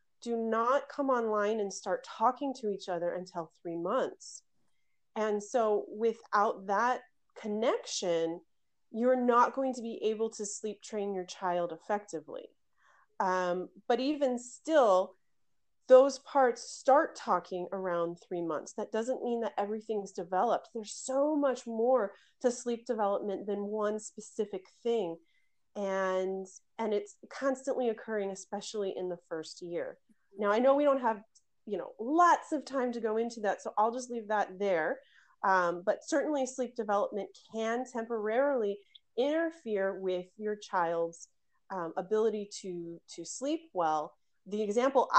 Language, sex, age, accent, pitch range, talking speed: English, female, 30-49, American, 185-240 Hz, 145 wpm